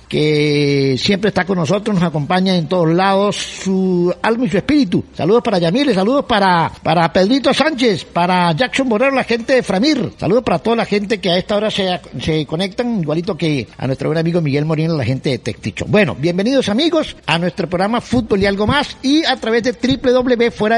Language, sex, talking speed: Spanish, male, 200 wpm